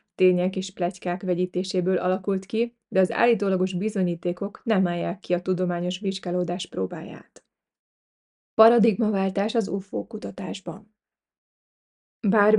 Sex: female